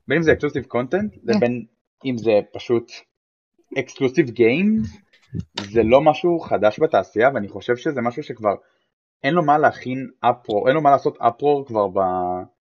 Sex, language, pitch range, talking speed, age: male, Hebrew, 120-165 Hz, 150 wpm, 20-39